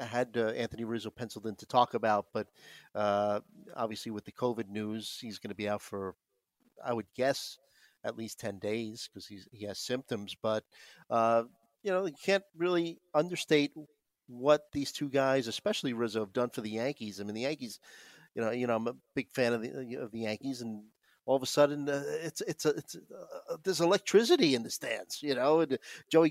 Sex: male